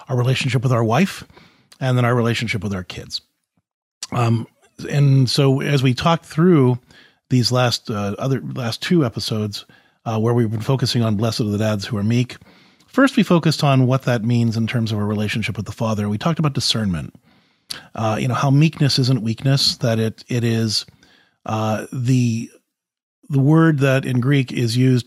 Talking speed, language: 185 wpm, English